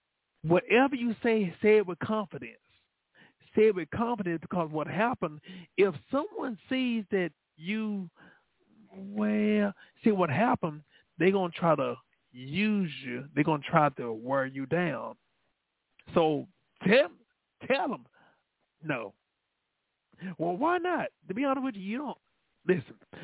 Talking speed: 140 wpm